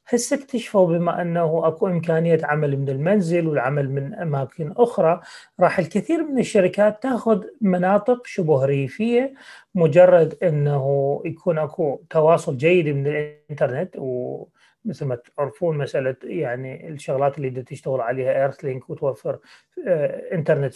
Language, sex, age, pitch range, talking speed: Arabic, male, 30-49, 140-185 Hz, 120 wpm